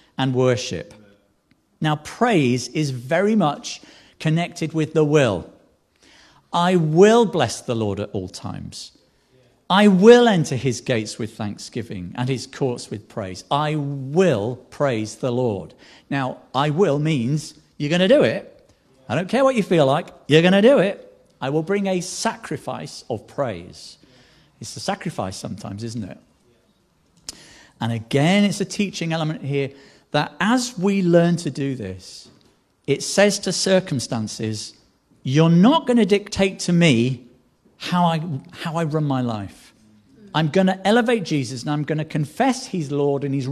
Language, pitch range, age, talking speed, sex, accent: English, 125-175 Hz, 50-69, 160 wpm, male, British